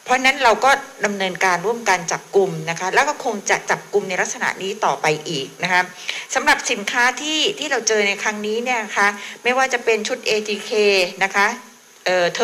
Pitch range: 195-240 Hz